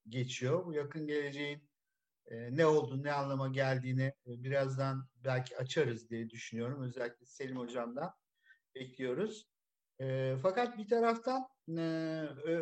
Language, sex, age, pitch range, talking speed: Turkish, male, 50-69, 135-200 Hz, 120 wpm